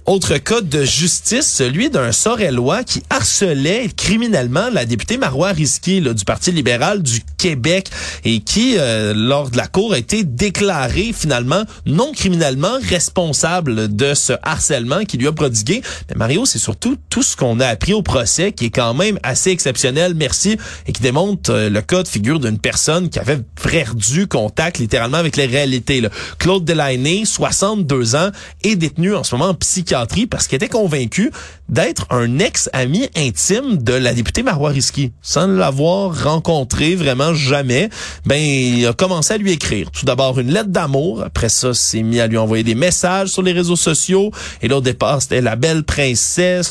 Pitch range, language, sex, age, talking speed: 130-185 Hz, French, male, 30-49, 175 wpm